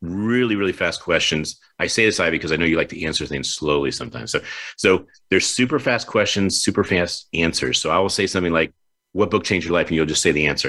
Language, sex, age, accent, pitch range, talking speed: English, male, 40-59, American, 80-100 Hz, 245 wpm